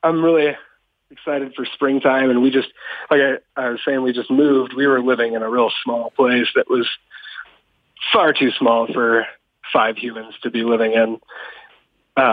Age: 30-49